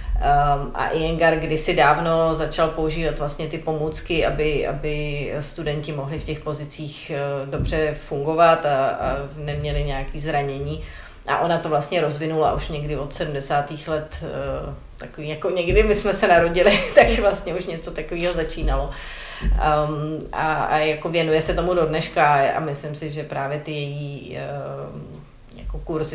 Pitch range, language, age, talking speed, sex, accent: 145-160 Hz, Czech, 30-49, 140 wpm, female, native